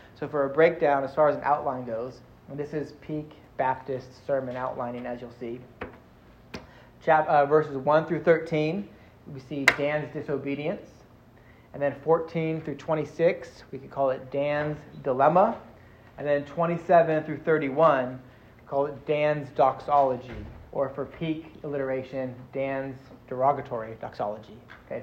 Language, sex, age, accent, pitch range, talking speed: English, male, 30-49, American, 130-155 Hz, 140 wpm